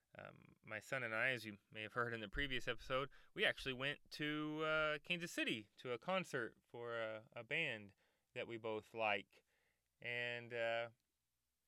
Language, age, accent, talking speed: English, 20-39, American, 175 wpm